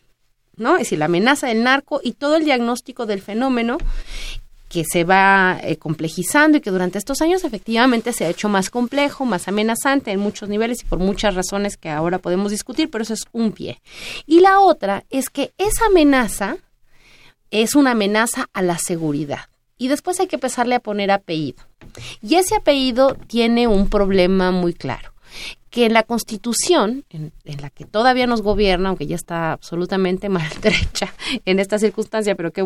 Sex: female